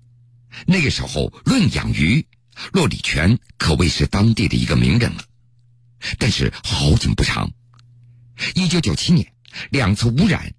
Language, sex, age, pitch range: Chinese, male, 60-79, 110-135 Hz